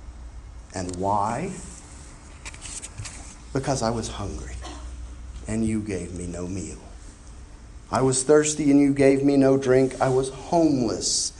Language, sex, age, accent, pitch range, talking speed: English, male, 40-59, American, 95-135 Hz, 125 wpm